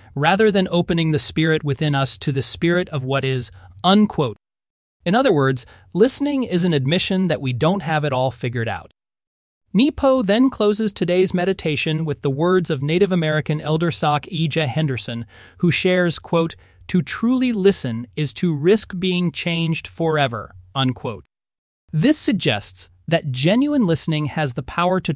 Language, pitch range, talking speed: English, 130-185 Hz, 155 wpm